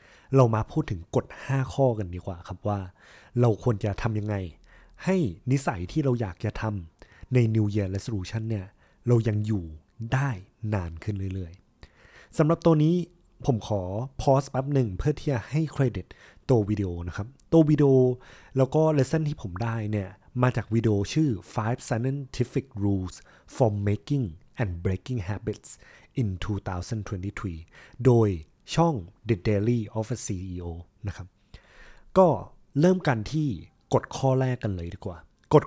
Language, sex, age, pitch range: Thai, male, 20-39, 100-135 Hz